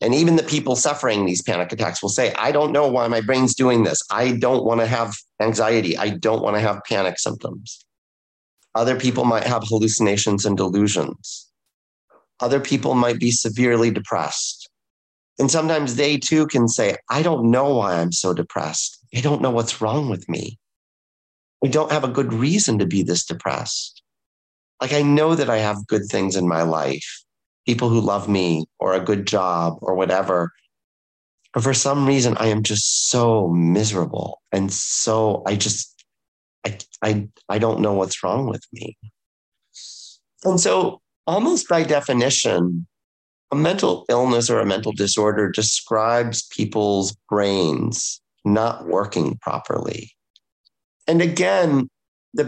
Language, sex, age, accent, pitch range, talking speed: English, male, 30-49, American, 95-130 Hz, 155 wpm